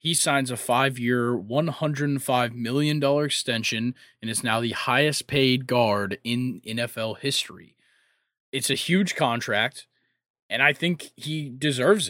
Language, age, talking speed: English, 20-39, 130 wpm